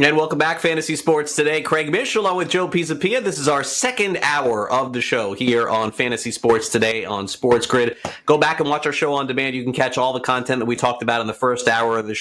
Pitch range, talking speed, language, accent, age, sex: 110-135 Hz, 255 wpm, English, American, 30-49, male